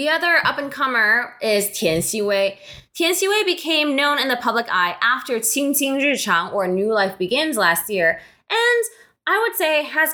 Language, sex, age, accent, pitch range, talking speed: English, female, 20-39, American, 210-300 Hz, 170 wpm